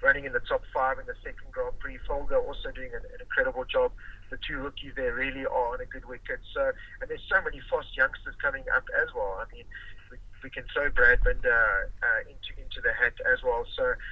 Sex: male